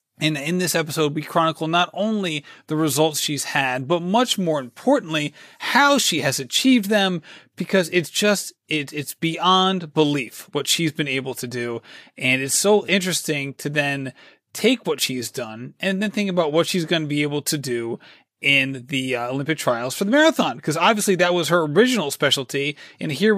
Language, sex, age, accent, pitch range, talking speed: English, male, 30-49, American, 145-195 Hz, 185 wpm